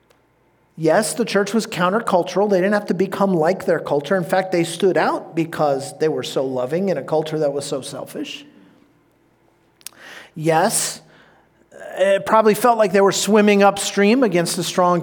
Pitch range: 155-195 Hz